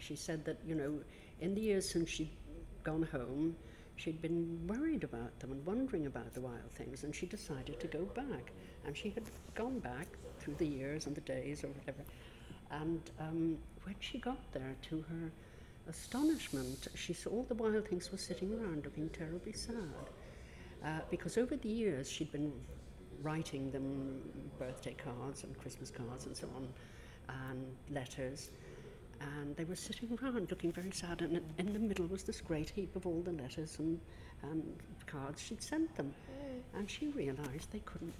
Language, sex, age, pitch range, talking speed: English, female, 60-79, 140-195 Hz, 180 wpm